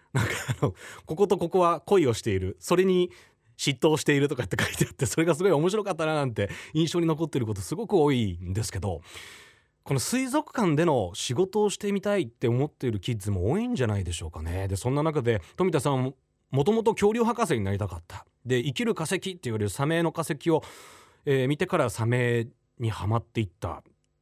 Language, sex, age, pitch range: Japanese, male, 30-49, 100-155 Hz